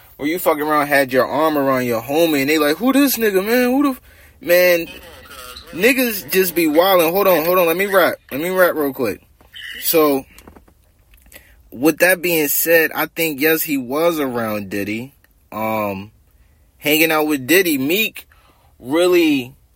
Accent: American